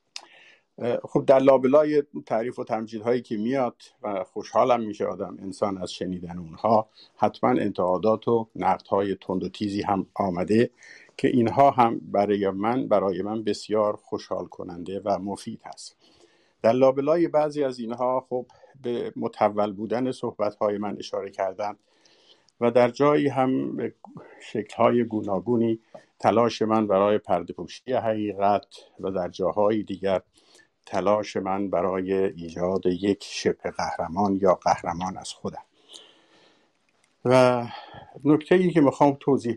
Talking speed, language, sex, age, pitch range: 130 wpm, Persian, male, 50-69, 100-130 Hz